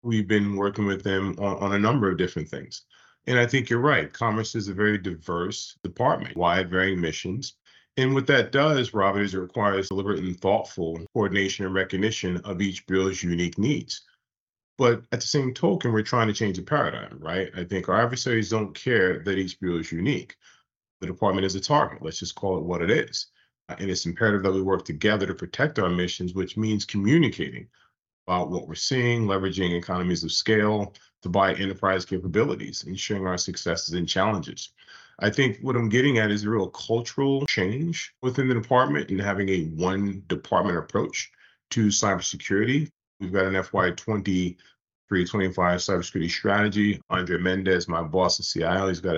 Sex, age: male, 40-59